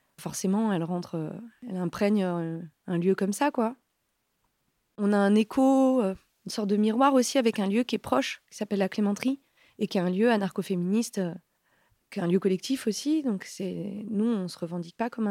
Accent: French